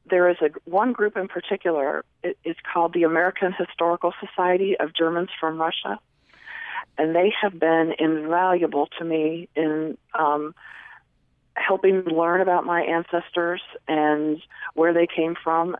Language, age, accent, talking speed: English, 50-69, American, 135 wpm